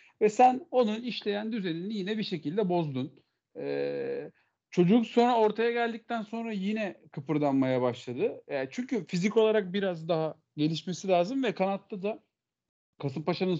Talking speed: 130 wpm